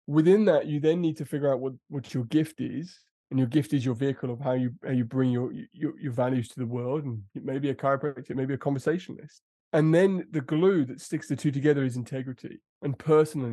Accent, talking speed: British, 230 wpm